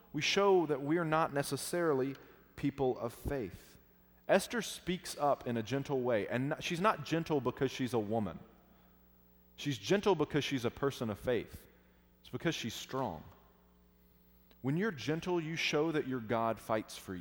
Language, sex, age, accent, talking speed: English, male, 30-49, American, 165 wpm